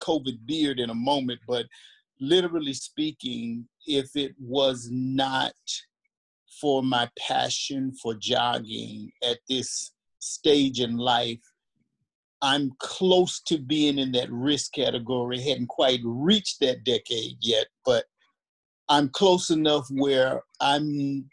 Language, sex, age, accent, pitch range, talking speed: English, male, 50-69, American, 125-155 Hz, 120 wpm